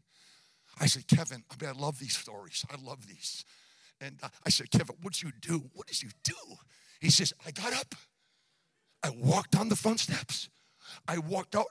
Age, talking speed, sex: 50-69, 200 wpm, male